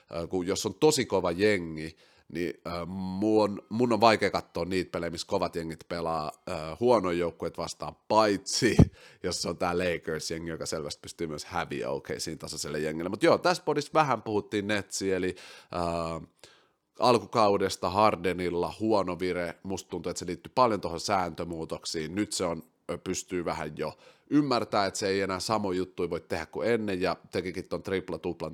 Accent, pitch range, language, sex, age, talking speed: native, 85-110 Hz, Finnish, male, 30-49, 160 wpm